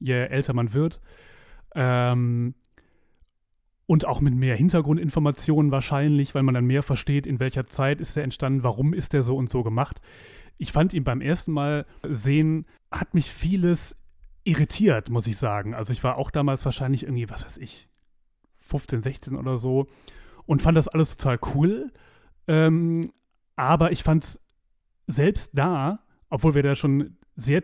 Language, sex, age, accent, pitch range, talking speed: German, male, 30-49, German, 125-155 Hz, 165 wpm